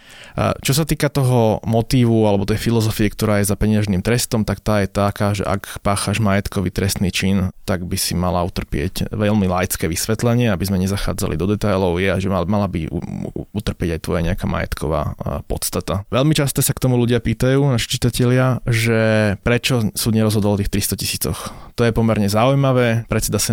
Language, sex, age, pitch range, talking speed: Slovak, male, 20-39, 100-115 Hz, 175 wpm